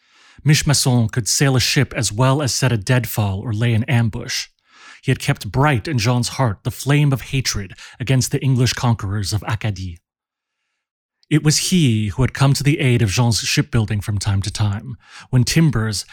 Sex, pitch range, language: male, 110-140 Hz, English